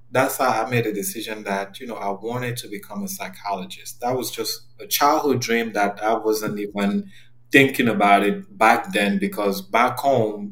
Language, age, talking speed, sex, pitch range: English, 30-49, 190 wpm, male, 110-130 Hz